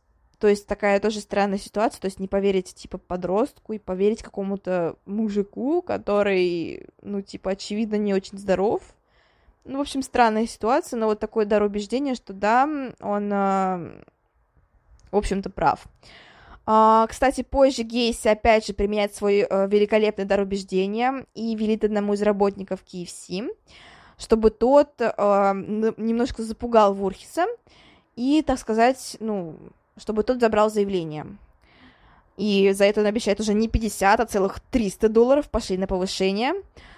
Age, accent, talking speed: 20-39, native, 135 wpm